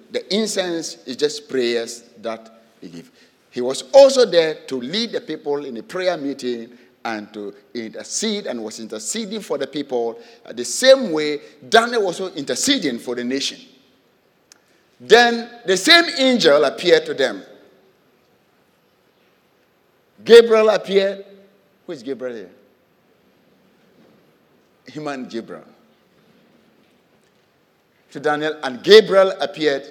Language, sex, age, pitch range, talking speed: English, male, 50-69, 130-210 Hz, 115 wpm